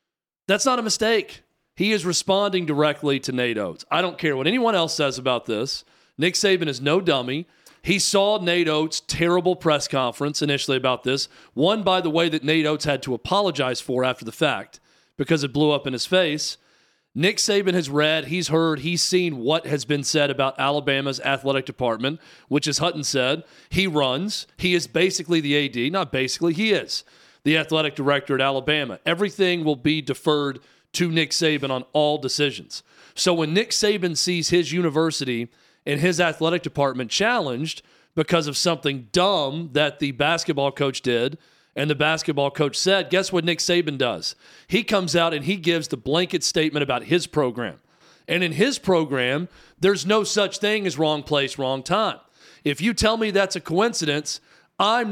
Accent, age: American, 40-59